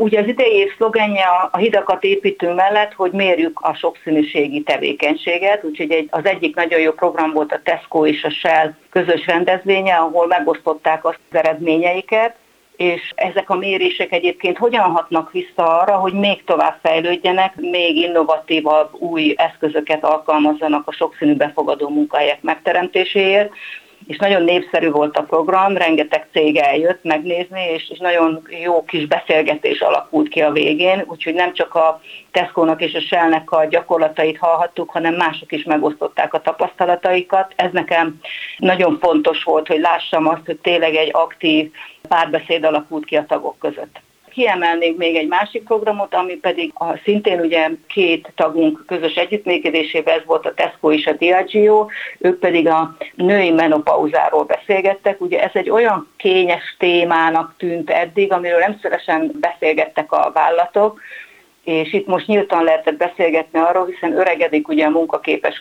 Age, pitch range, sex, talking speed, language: 50-69, 160-190 Hz, female, 145 wpm, Hungarian